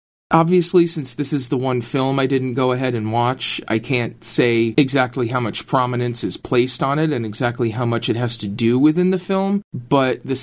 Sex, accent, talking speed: male, American, 215 wpm